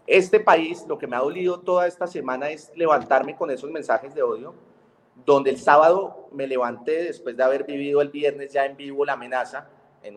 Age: 30-49